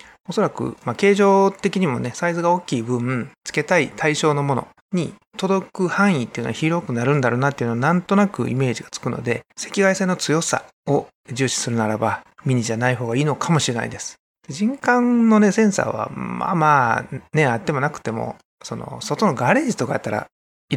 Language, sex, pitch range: Japanese, male, 125-160 Hz